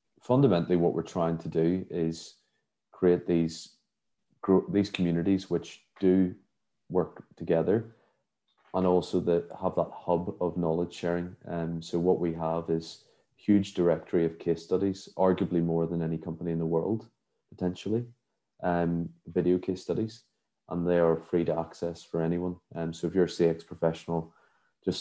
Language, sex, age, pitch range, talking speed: English, male, 30-49, 80-90 Hz, 160 wpm